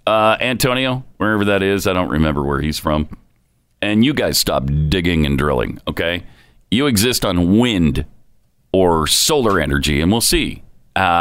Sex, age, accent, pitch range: male, 40-59, American, 90-140 Hz